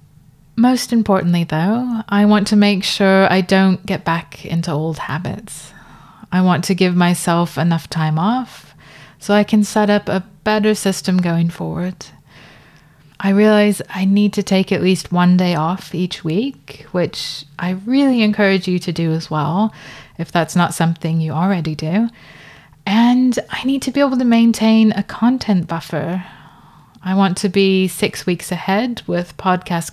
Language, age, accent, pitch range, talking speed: English, 20-39, British, 165-210 Hz, 165 wpm